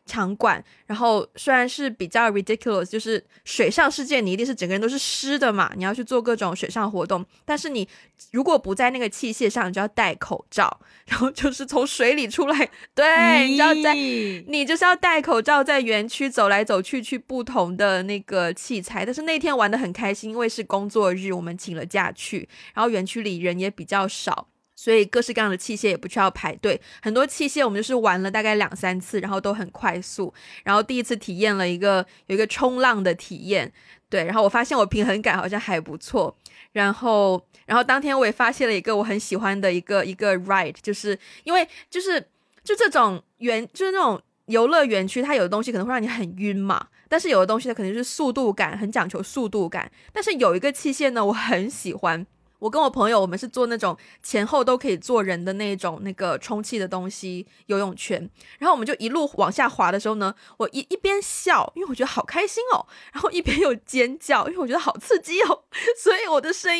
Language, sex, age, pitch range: Chinese, female, 20-39, 195-280 Hz